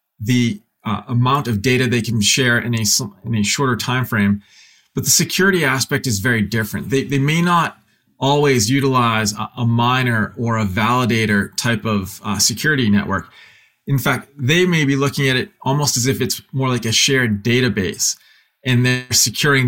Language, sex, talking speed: English, male, 175 wpm